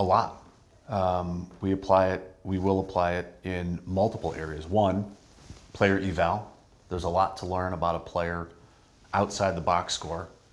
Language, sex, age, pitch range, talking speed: English, male, 30-49, 85-100 Hz, 160 wpm